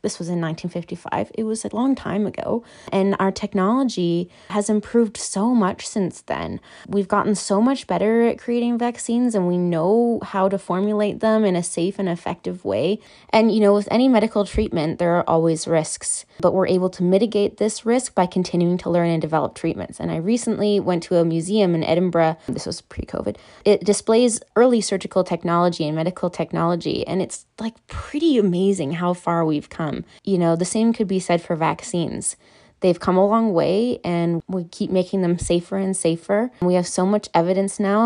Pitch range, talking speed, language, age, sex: 170-220 Hz, 190 wpm, English, 20-39, female